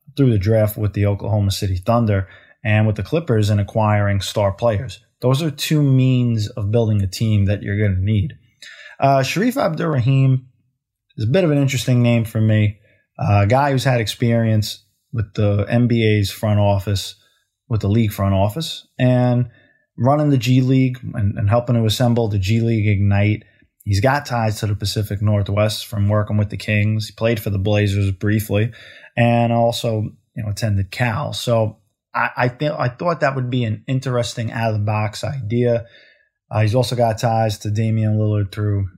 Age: 20-39